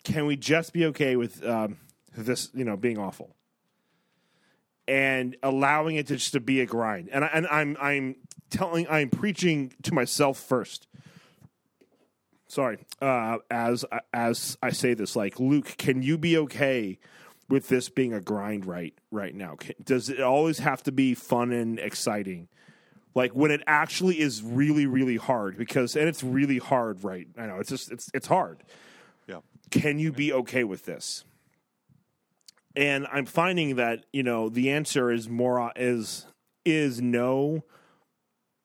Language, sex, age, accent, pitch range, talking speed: English, male, 30-49, American, 120-150 Hz, 160 wpm